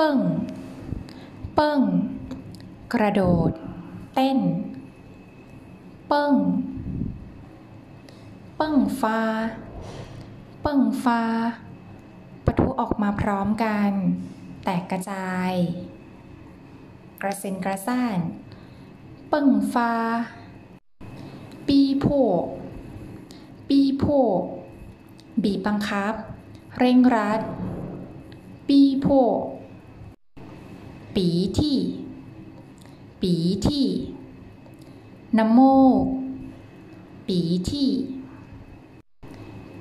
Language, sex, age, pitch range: Thai, female, 20-39, 190-265 Hz